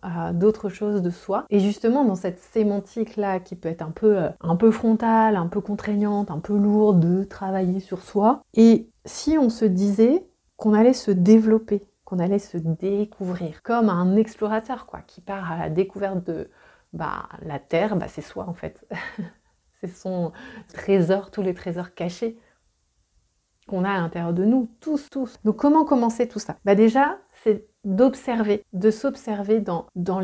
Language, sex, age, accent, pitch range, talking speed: French, female, 30-49, French, 175-220 Hz, 175 wpm